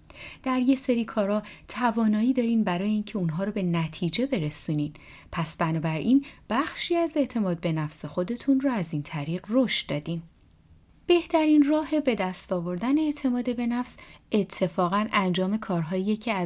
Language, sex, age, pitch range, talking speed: Persian, female, 30-49, 170-235 Hz, 140 wpm